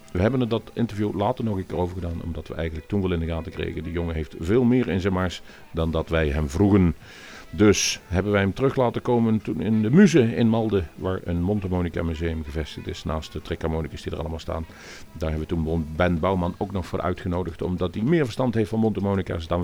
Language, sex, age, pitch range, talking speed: Dutch, male, 50-69, 80-100 Hz, 235 wpm